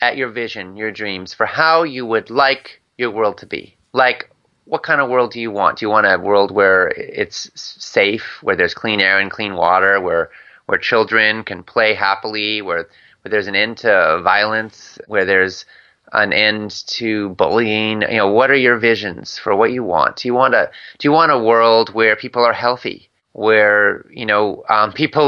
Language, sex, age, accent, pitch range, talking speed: English, male, 30-49, American, 105-125 Hz, 200 wpm